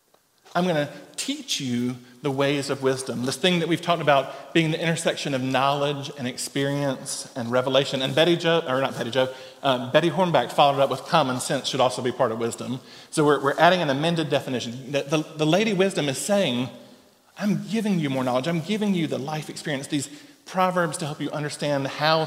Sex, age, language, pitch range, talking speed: male, 40-59, English, 125-155 Hz, 210 wpm